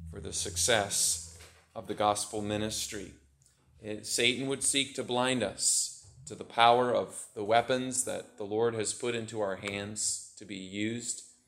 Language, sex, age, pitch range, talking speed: English, male, 30-49, 105-125 Hz, 155 wpm